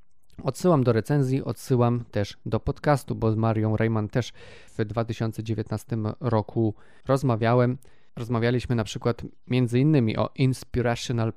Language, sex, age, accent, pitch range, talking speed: Polish, male, 20-39, native, 110-125 Hz, 120 wpm